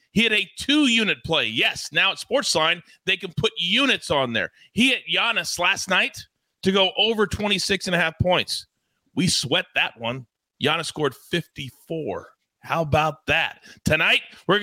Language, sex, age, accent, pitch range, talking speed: English, male, 30-49, American, 155-215 Hz, 170 wpm